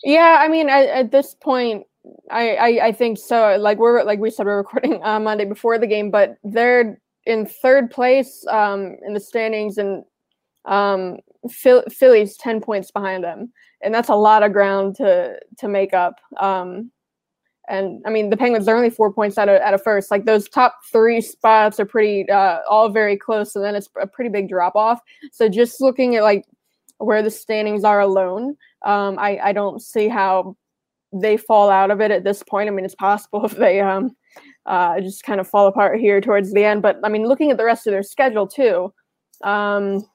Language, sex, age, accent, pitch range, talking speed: English, female, 20-39, American, 200-230 Hz, 205 wpm